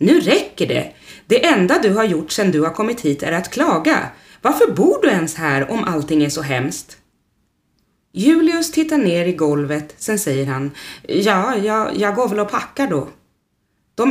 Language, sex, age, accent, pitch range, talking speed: Swedish, female, 30-49, native, 155-255 Hz, 185 wpm